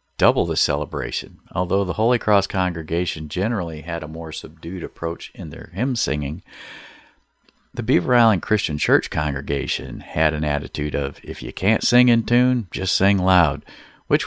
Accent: American